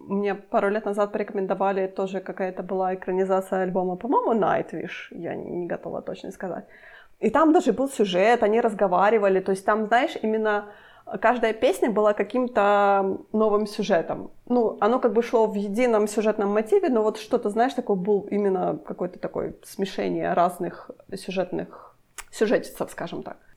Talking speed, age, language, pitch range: 150 wpm, 20-39, Ukrainian, 185-235 Hz